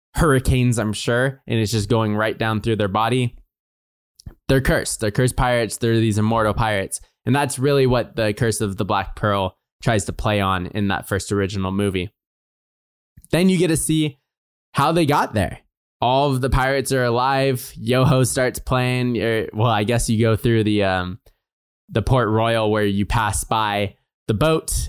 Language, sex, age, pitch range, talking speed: English, male, 10-29, 105-125 Hz, 185 wpm